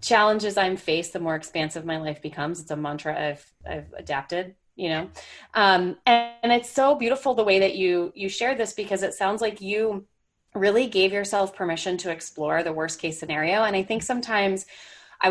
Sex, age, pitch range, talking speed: female, 20-39, 160-195 Hz, 195 wpm